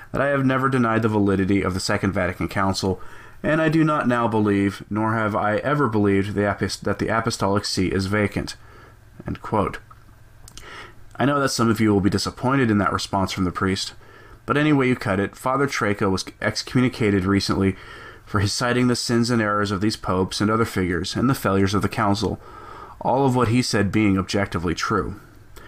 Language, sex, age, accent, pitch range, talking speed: English, male, 30-49, American, 100-120 Hz, 200 wpm